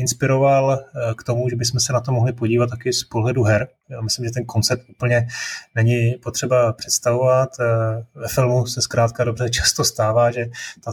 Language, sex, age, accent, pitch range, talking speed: Czech, male, 20-39, native, 110-125 Hz, 175 wpm